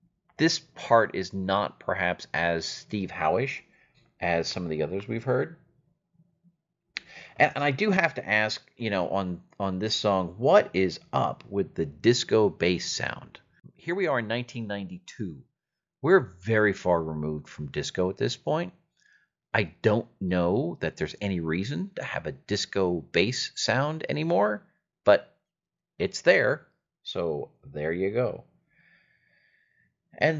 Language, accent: English, American